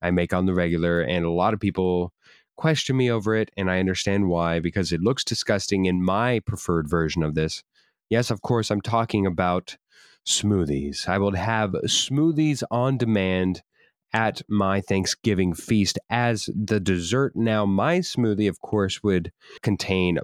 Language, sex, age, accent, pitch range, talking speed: English, male, 30-49, American, 90-110 Hz, 165 wpm